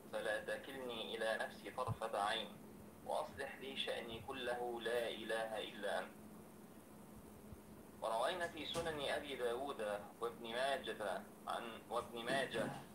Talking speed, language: 110 wpm, Arabic